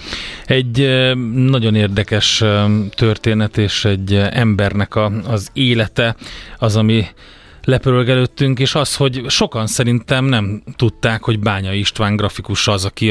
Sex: male